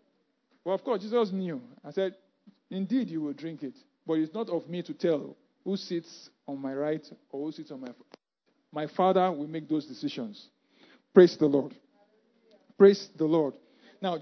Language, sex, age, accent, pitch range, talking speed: English, male, 50-69, Nigerian, 170-260 Hz, 180 wpm